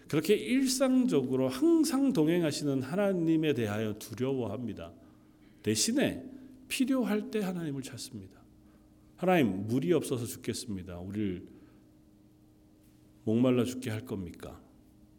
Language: Korean